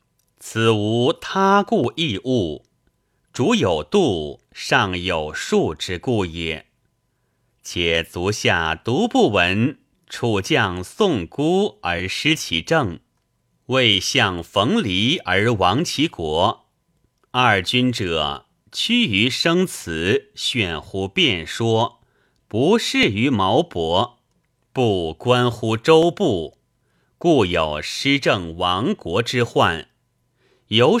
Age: 30-49